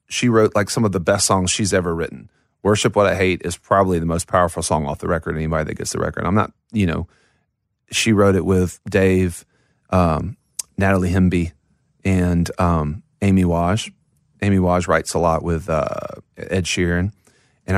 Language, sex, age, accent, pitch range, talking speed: English, male, 30-49, American, 90-115 Hz, 185 wpm